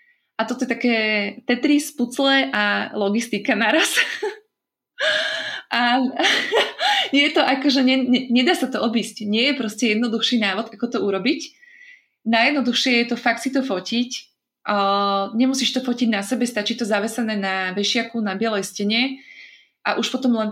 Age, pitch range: 20-39, 210-260 Hz